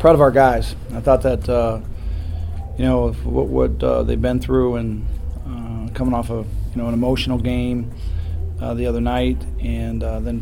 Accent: American